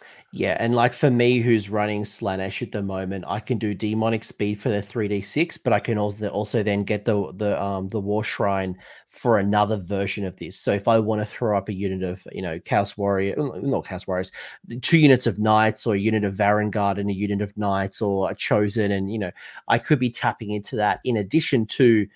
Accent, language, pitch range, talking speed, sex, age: Australian, English, 100-125 Hz, 230 wpm, male, 30-49